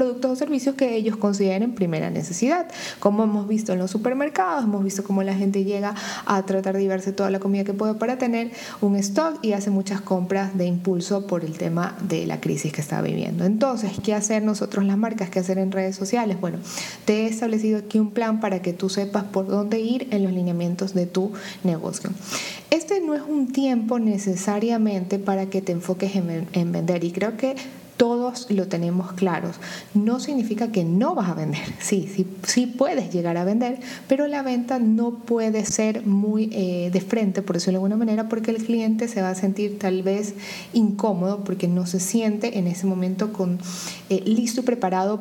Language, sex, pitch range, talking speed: Spanish, female, 190-230 Hz, 200 wpm